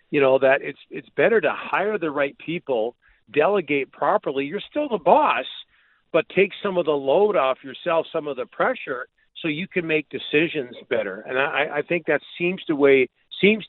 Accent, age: American, 50-69